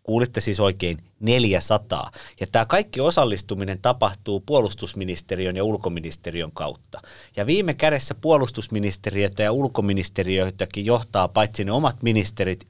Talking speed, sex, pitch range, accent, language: 115 wpm, male, 95-125 Hz, native, Finnish